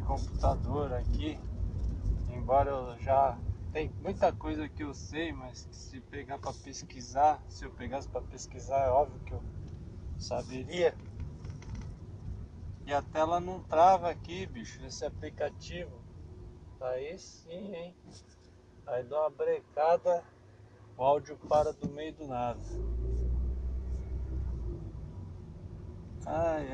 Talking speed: 115 wpm